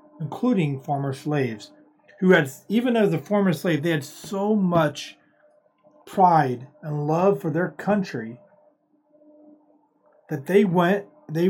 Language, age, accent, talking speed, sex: English, 30-49, American, 125 wpm, male